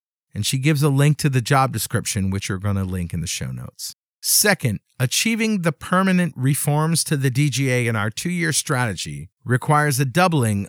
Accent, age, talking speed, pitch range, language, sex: American, 50-69, 185 wpm, 105-150 Hz, English, male